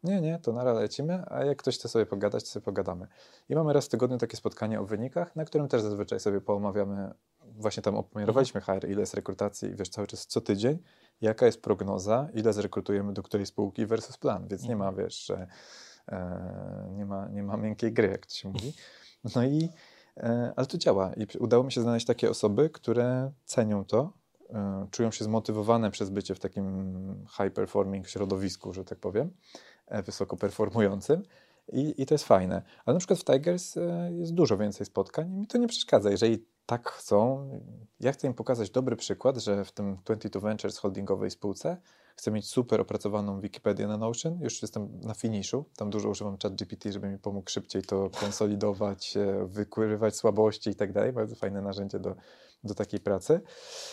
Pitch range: 100-130 Hz